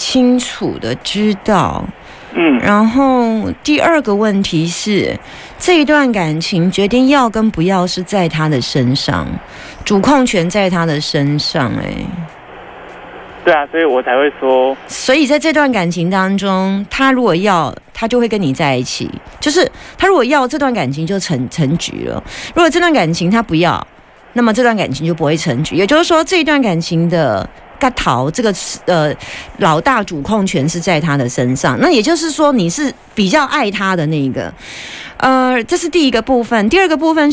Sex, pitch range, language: female, 170-275 Hz, Chinese